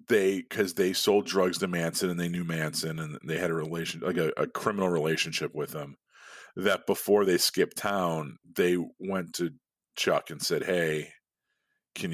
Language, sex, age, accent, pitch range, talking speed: English, male, 40-59, American, 80-105 Hz, 180 wpm